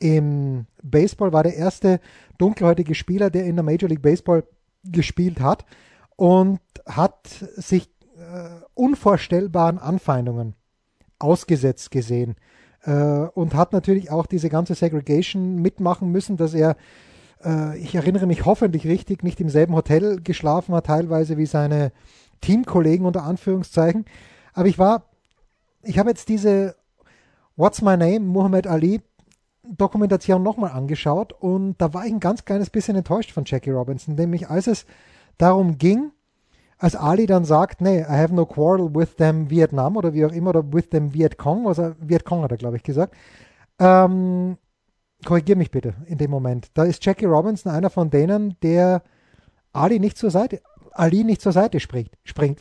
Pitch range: 155-190 Hz